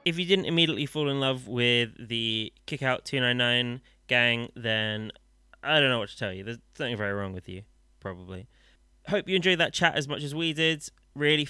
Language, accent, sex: English, British, male